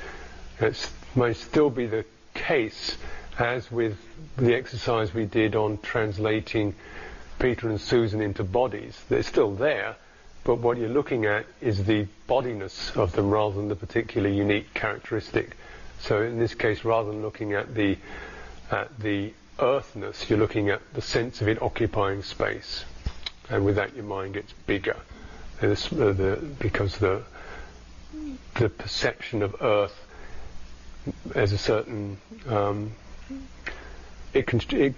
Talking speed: 140 wpm